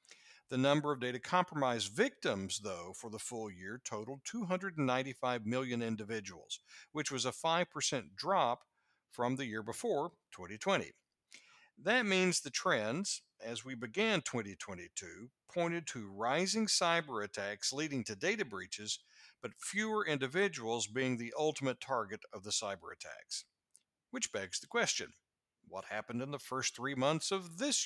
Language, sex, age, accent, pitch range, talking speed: English, male, 60-79, American, 115-175 Hz, 140 wpm